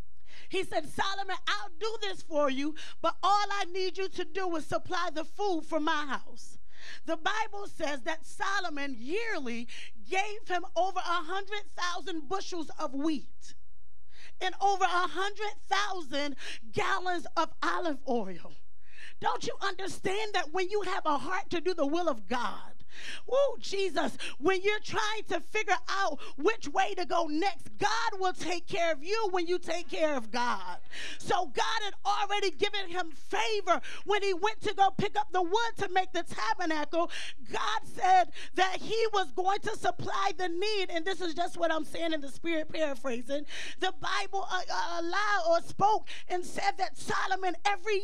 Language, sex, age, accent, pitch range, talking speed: English, female, 30-49, American, 325-395 Hz, 170 wpm